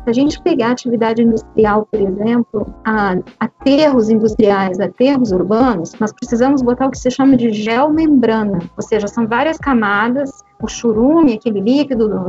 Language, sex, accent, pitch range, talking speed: Portuguese, female, Brazilian, 225-280 Hz, 155 wpm